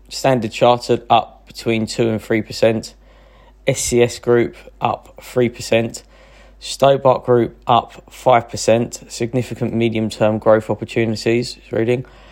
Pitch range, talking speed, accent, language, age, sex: 110-125 Hz, 100 wpm, British, English, 20-39, male